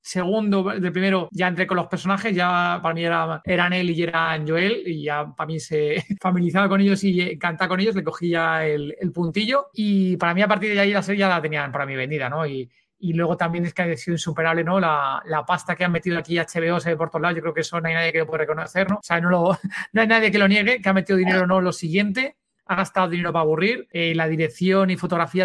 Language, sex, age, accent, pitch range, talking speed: Spanish, male, 30-49, Spanish, 165-190 Hz, 265 wpm